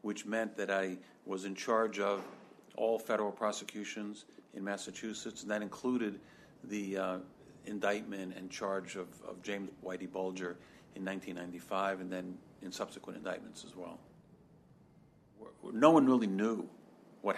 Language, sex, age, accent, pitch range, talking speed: English, male, 50-69, American, 95-110 Hz, 140 wpm